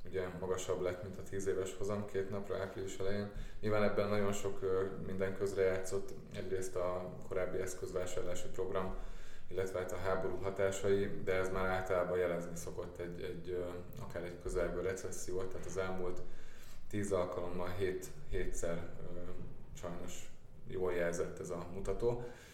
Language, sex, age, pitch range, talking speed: Hungarian, male, 20-39, 90-95 Hz, 145 wpm